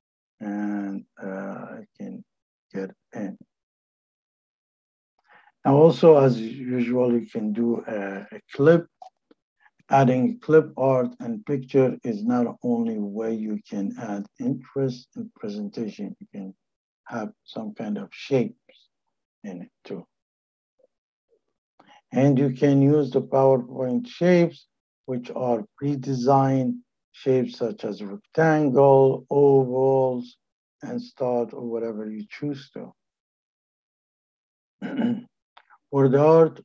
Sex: male